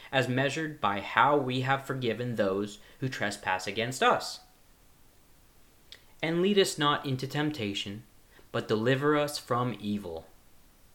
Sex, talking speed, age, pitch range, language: male, 125 wpm, 30-49, 110-150 Hz, English